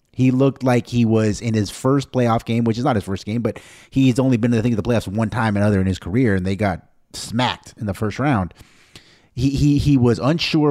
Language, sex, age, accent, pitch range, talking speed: English, male, 30-49, American, 105-135 Hz, 260 wpm